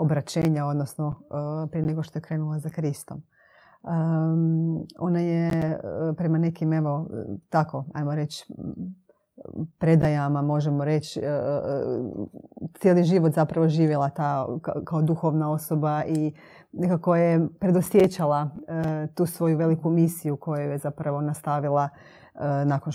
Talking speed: 110 wpm